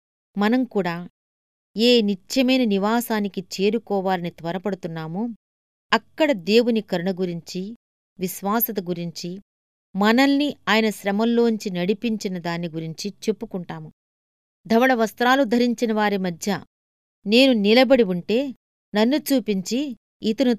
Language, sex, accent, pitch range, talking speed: Telugu, female, native, 180-230 Hz, 85 wpm